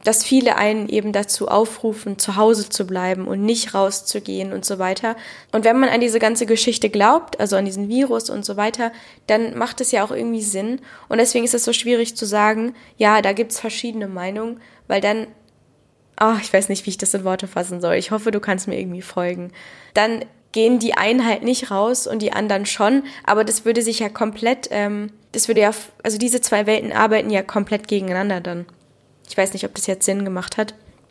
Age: 10-29